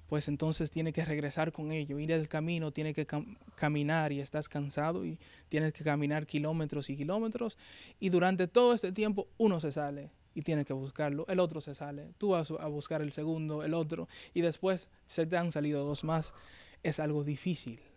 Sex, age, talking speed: male, 20-39, 200 wpm